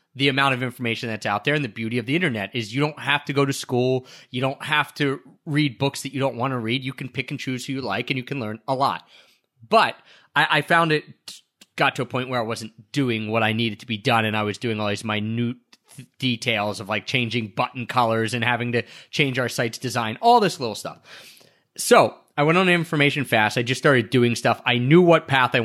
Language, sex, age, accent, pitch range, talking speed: English, male, 30-49, American, 120-145 Hz, 250 wpm